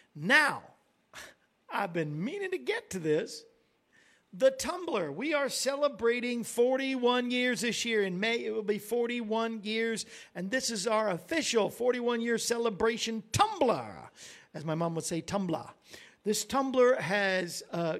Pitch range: 185-235 Hz